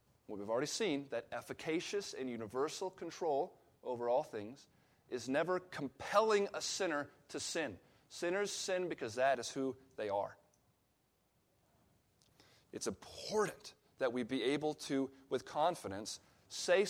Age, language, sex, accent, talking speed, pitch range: 30-49, English, male, American, 130 wpm, 130-195 Hz